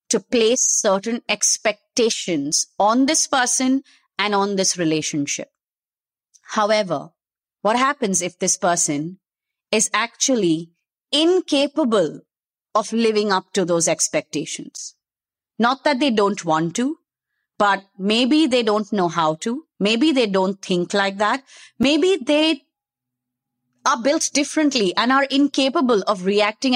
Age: 30-49